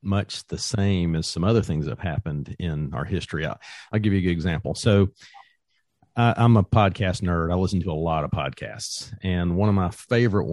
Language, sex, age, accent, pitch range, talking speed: English, male, 40-59, American, 85-105 Hz, 215 wpm